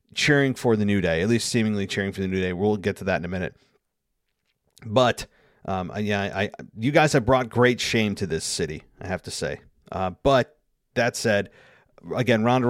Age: 40-59